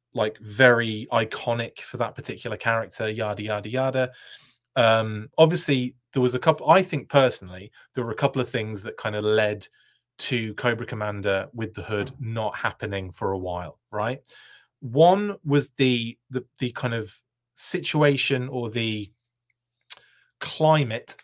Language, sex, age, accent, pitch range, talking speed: English, male, 30-49, British, 110-135 Hz, 145 wpm